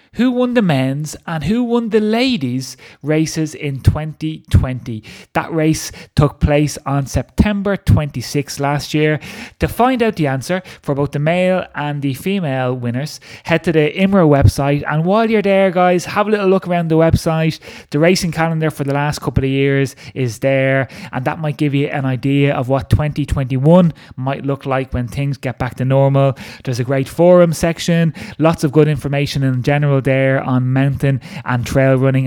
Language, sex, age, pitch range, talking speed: English, male, 20-39, 135-160 Hz, 180 wpm